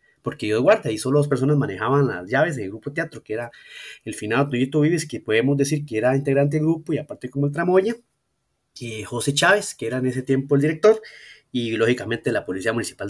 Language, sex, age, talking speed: Spanish, male, 30-49, 215 wpm